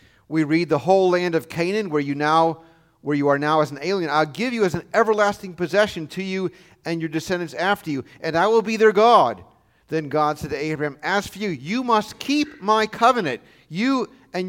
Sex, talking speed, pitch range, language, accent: male, 215 wpm, 155-215 Hz, English, American